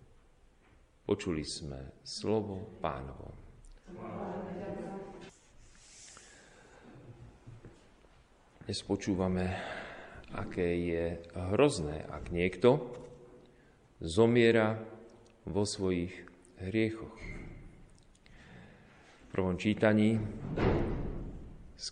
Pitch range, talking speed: 85-115 Hz, 50 wpm